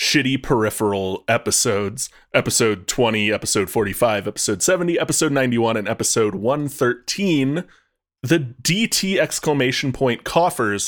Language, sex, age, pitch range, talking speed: English, male, 30-49, 110-150 Hz, 105 wpm